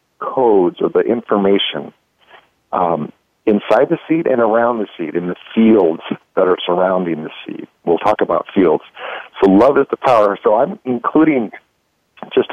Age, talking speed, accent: 50-69, 160 wpm, American